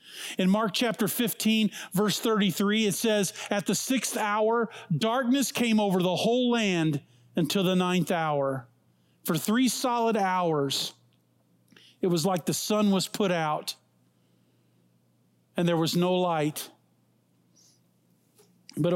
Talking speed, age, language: 125 wpm, 50-69, English